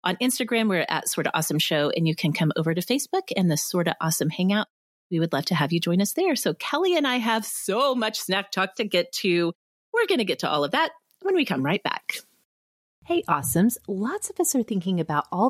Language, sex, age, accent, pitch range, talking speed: English, female, 30-49, American, 160-245 Hz, 240 wpm